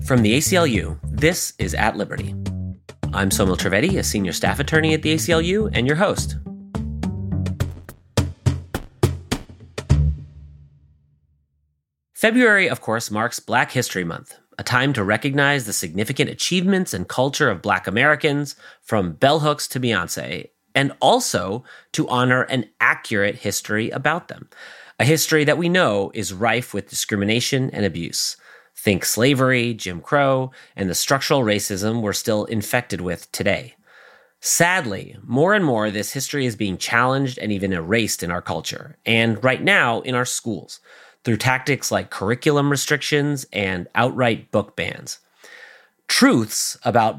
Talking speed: 140 wpm